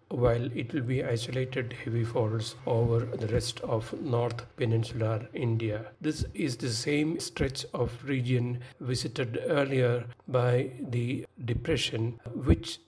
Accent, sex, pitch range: Indian, male, 120-130 Hz